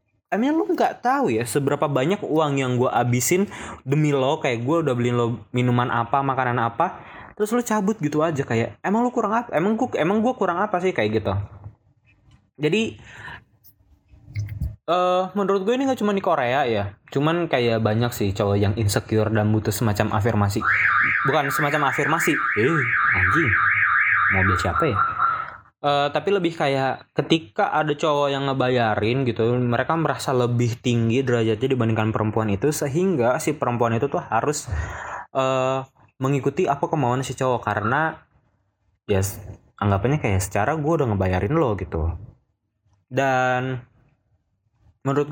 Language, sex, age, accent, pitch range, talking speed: Indonesian, male, 20-39, native, 110-160 Hz, 150 wpm